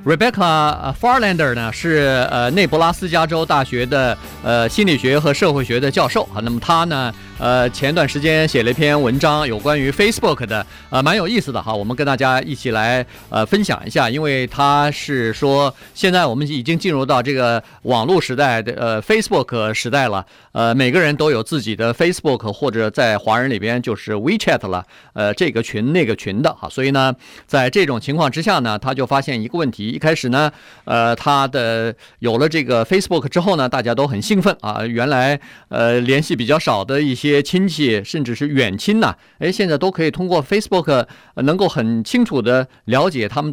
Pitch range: 120-160 Hz